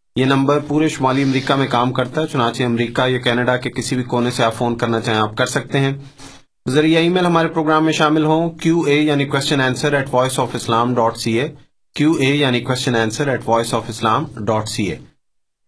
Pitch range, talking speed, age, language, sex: 125-150 Hz, 170 wpm, 30-49, Urdu, male